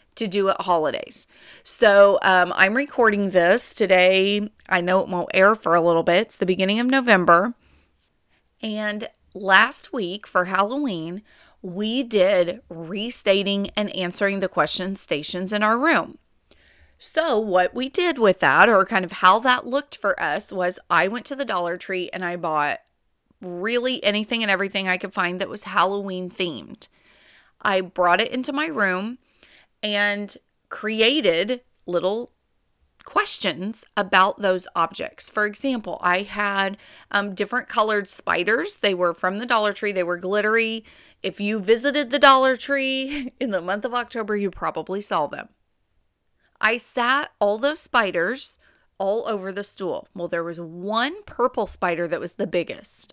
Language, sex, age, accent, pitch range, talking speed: English, female, 30-49, American, 185-230 Hz, 155 wpm